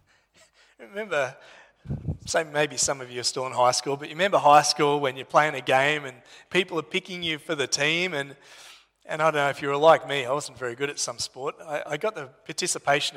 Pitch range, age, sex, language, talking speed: 135-185 Hz, 30-49, male, English, 230 wpm